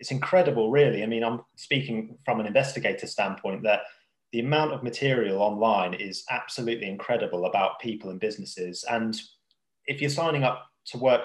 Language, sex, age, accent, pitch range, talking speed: English, male, 20-39, British, 110-135 Hz, 165 wpm